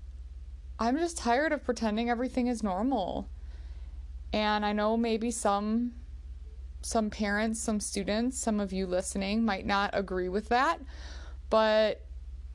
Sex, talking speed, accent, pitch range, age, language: female, 130 wpm, American, 180-245 Hz, 20-39, English